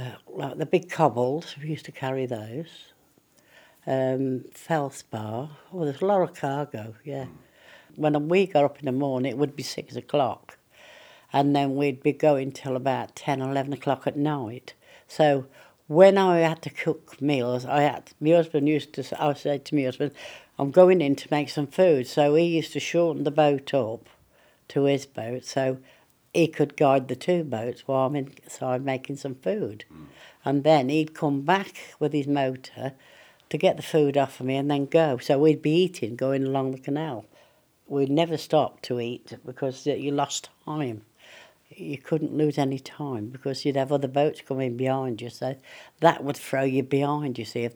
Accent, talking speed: British, 190 wpm